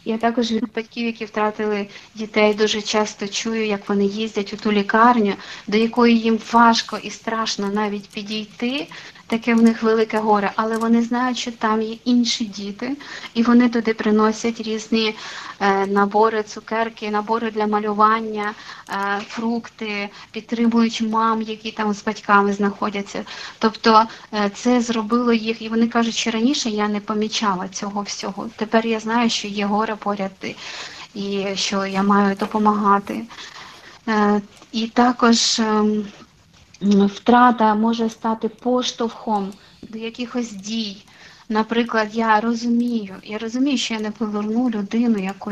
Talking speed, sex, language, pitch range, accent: 140 wpm, female, Ukrainian, 210-230 Hz, native